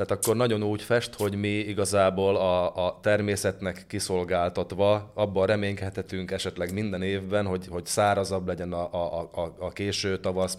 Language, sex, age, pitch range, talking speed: Hungarian, male, 20-39, 95-110 Hz, 155 wpm